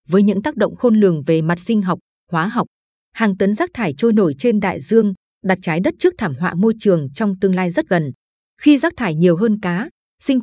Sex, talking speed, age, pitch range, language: female, 235 wpm, 20-39, 175-225 Hz, Vietnamese